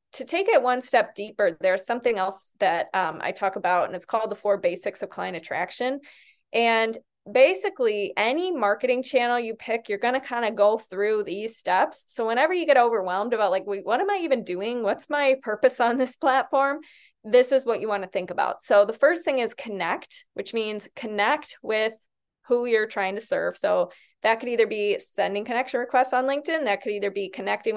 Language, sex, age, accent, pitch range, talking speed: English, female, 20-39, American, 205-260 Hz, 205 wpm